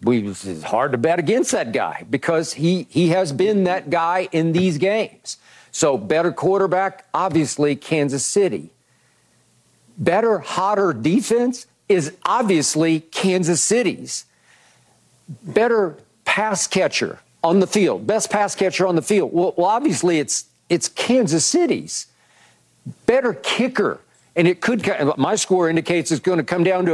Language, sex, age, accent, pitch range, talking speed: English, male, 50-69, American, 155-200 Hz, 145 wpm